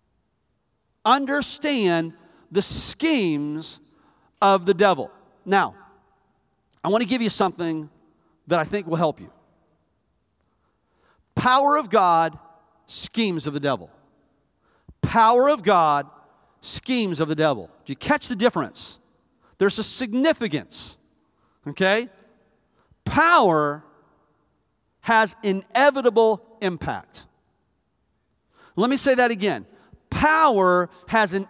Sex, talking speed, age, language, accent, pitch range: male, 105 wpm, 40-59, English, American, 175-270 Hz